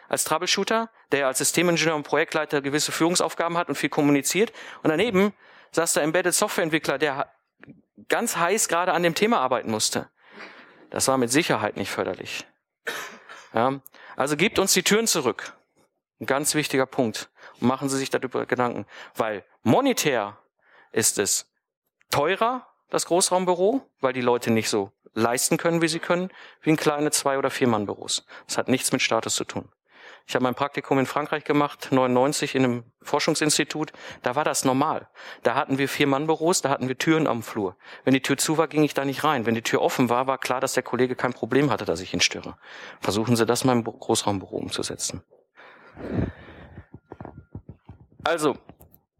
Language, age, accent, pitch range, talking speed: German, 50-69, German, 130-170 Hz, 175 wpm